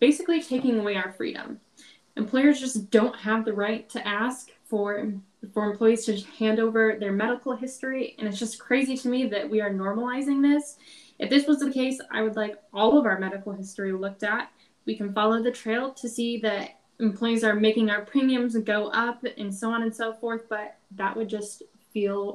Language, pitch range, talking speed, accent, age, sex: English, 205-230 Hz, 200 wpm, American, 10-29, female